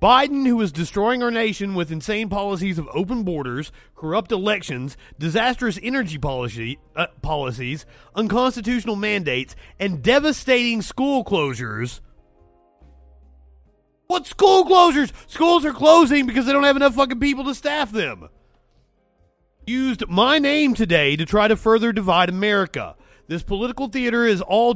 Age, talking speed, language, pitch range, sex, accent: 30-49, 135 wpm, English, 155-235 Hz, male, American